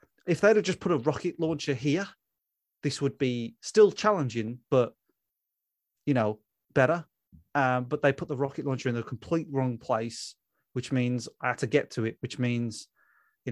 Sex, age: male, 30-49